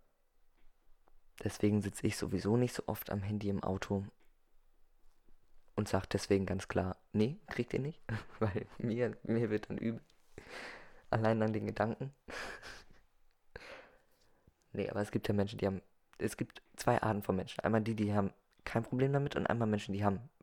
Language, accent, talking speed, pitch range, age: German, German, 165 wpm, 95-110 Hz, 20-39